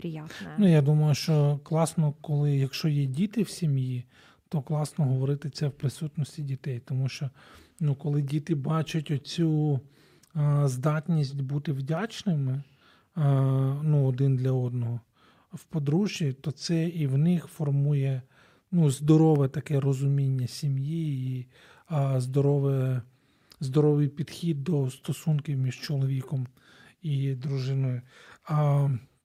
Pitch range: 135-160 Hz